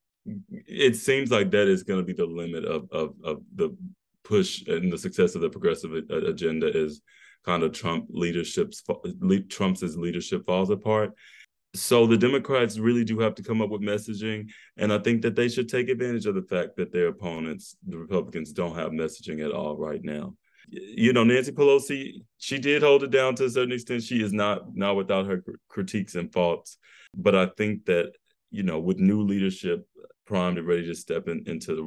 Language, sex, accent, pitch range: English, male, American, 85-145 Hz